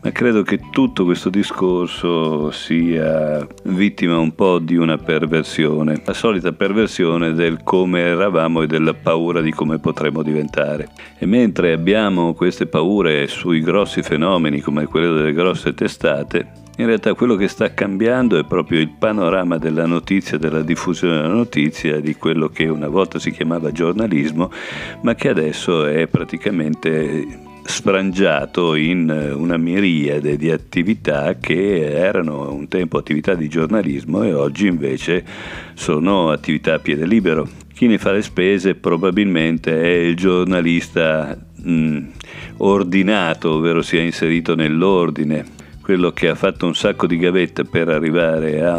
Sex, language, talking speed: male, Italian, 140 wpm